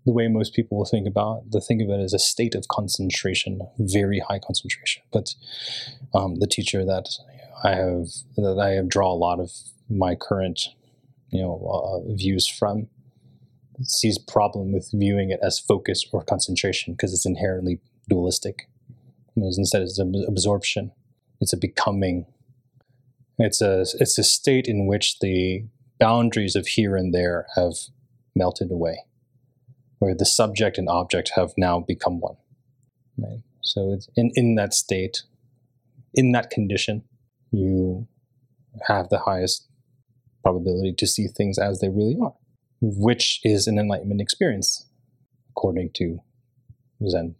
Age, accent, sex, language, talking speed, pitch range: 20-39, American, male, English, 145 wpm, 95-125 Hz